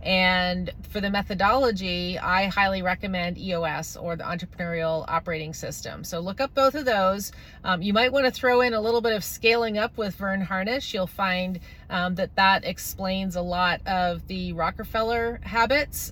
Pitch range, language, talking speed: 175-220 Hz, English, 175 wpm